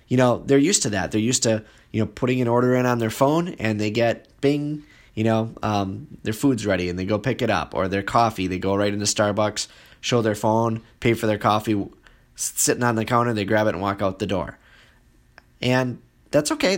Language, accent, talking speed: English, American, 230 wpm